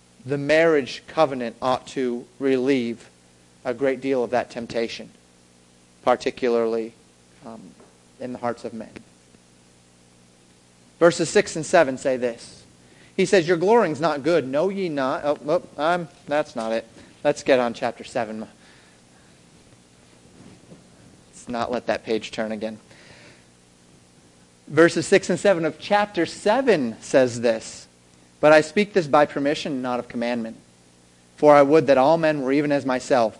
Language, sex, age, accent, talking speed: English, male, 30-49, American, 145 wpm